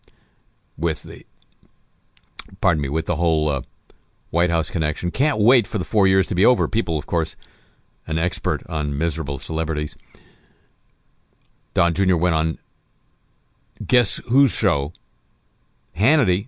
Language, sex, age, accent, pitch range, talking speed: English, male, 50-69, American, 80-105 Hz, 130 wpm